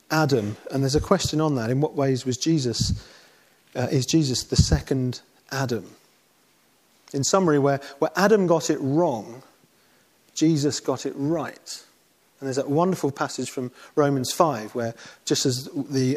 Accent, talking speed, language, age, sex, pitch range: British, 155 wpm, English, 40-59, male, 130-160 Hz